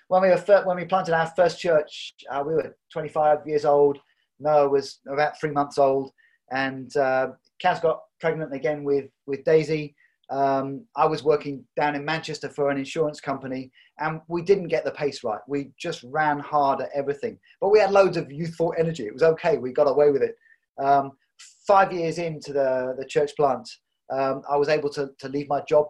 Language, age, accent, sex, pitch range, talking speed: English, 30-49, British, male, 140-170 Hz, 200 wpm